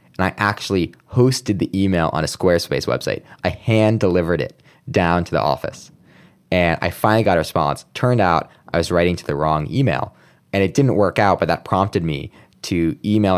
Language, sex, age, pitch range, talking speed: English, male, 20-39, 85-115 Hz, 195 wpm